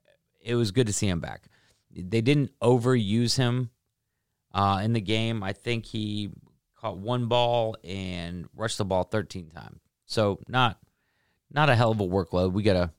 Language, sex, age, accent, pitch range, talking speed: English, male, 30-49, American, 90-120 Hz, 175 wpm